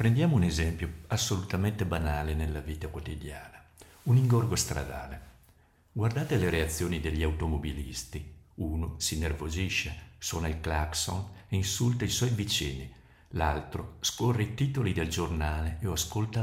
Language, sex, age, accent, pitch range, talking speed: Italian, male, 50-69, native, 80-105 Hz, 130 wpm